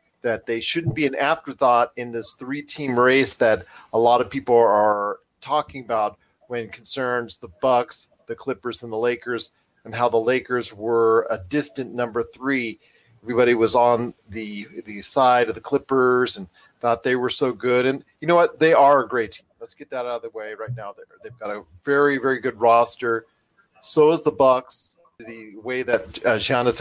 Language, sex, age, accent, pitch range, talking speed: English, male, 40-59, American, 115-155 Hz, 190 wpm